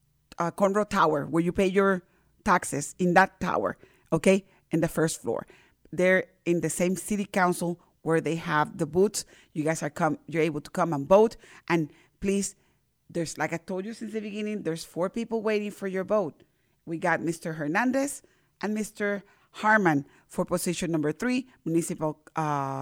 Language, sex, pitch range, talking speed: English, female, 160-205 Hz, 175 wpm